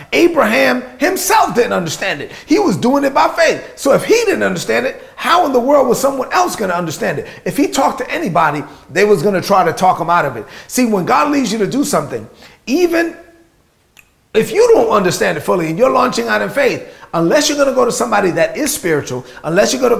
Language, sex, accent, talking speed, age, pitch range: English, male, American, 225 wpm, 30-49, 190-275 Hz